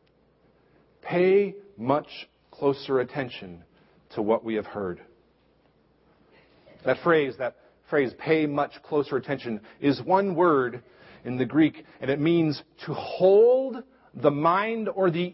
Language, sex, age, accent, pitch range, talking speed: English, male, 40-59, American, 145-200 Hz, 125 wpm